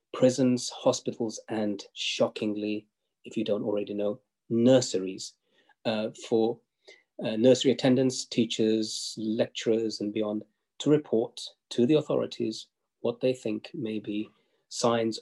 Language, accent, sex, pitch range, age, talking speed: English, British, male, 105-125 Hz, 40-59, 120 wpm